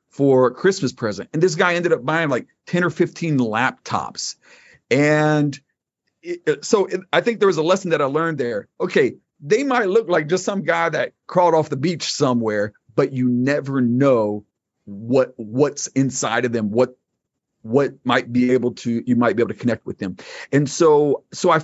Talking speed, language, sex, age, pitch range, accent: 190 wpm, English, male, 40-59, 115-165 Hz, American